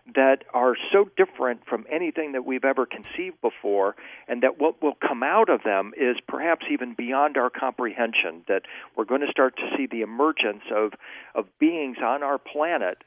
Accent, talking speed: American, 185 wpm